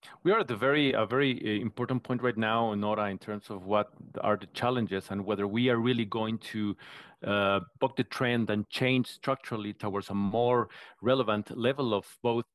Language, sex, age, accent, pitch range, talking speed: English, male, 30-49, Mexican, 105-130 Hz, 190 wpm